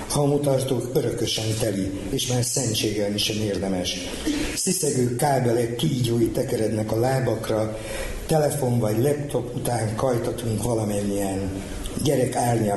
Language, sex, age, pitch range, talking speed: Hungarian, male, 60-79, 110-130 Hz, 105 wpm